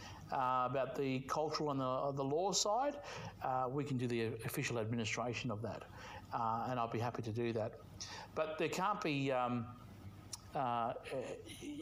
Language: English